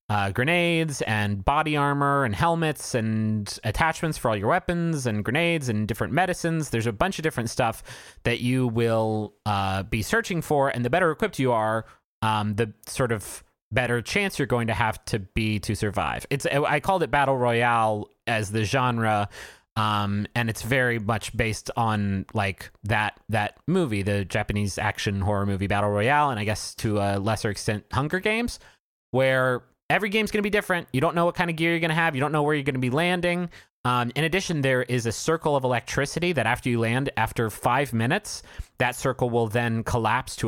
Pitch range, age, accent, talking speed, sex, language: 110-145 Hz, 30-49, American, 200 wpm, male, English